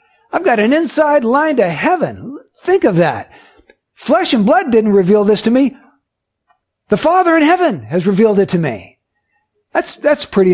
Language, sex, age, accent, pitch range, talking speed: English, male, 60-79, American, 185-275 Hz, 170 wpm